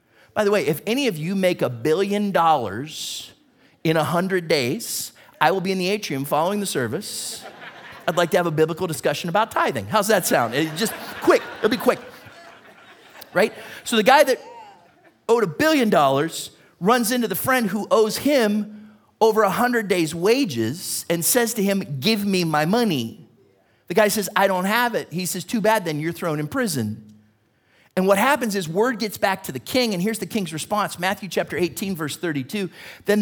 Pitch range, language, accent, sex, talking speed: 160-230 Hz, English, American, male, 190 wpm